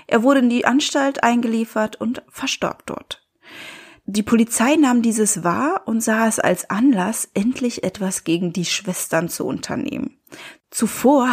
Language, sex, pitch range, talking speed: German, female, 195-280 Hz, 145 wpm